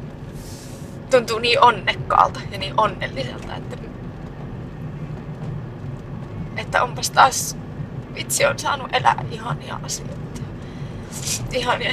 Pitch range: 125-145 Hz